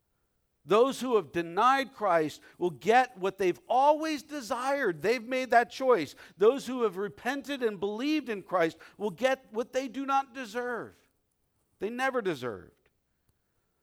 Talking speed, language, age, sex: 145 wpm, English, 50-69, male